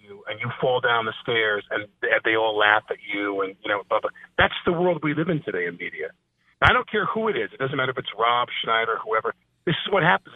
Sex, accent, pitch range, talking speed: male, American, 115-175 Hz, 255 wpm